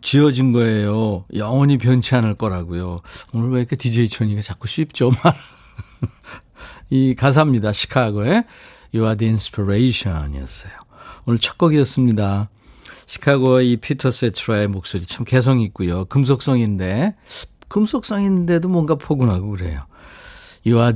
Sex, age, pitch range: male, 50-69, 105-150 Hz